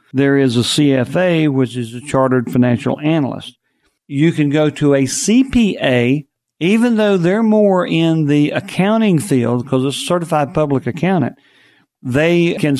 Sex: male